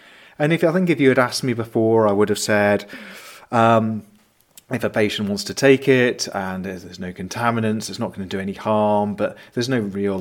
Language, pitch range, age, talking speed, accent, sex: English, 95-115 Hz, 40-59, 225 wpm, British, male